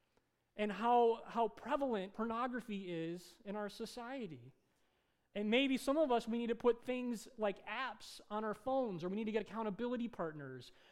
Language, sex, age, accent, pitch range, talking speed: English, male, 30-49, American, 165-235 Hz, 170 wpm